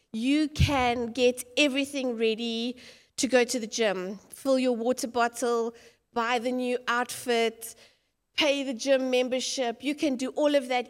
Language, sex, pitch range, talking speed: English, female, 235-290 Hz, 155 wpm